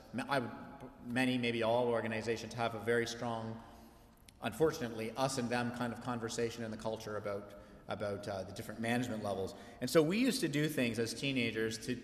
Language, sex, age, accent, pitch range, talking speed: English, male, 30-49, American, 115-130 Hz, 175 wpm